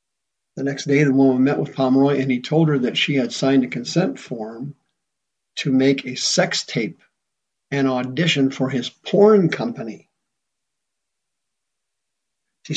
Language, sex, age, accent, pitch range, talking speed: English, male, 50-69, American, 130-160 Hz, 145 wpm